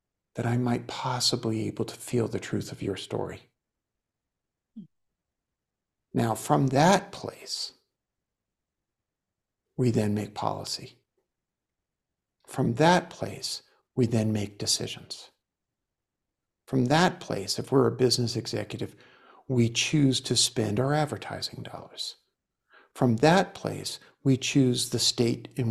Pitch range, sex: 110-140 Hz, male